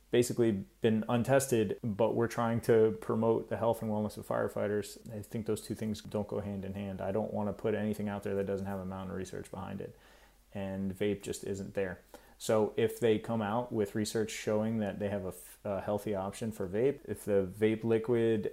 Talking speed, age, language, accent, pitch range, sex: 215 wpm, 30-49, English, American, 100-120 Hz, male